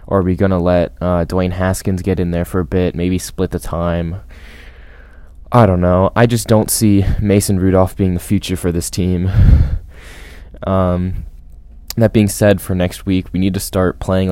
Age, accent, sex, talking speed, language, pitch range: 20-39, American, male, 195 wpm, English, 80-95 Hz